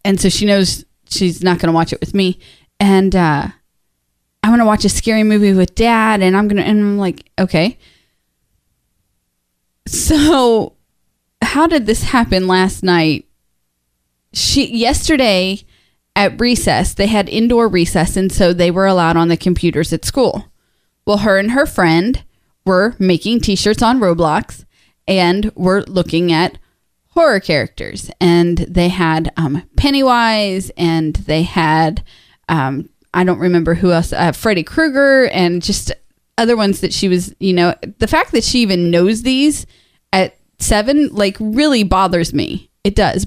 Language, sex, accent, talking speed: English, female, American, 155 wpm